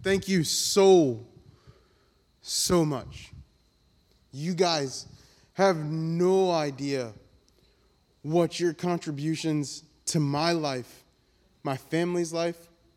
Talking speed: 90 wpm